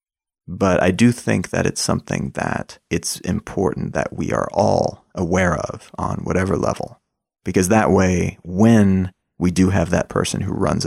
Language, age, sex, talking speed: English, 30-49, male, 165 wpm